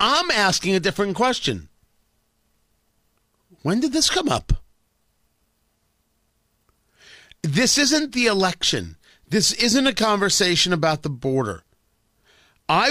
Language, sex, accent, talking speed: English, male, American, 100 wpm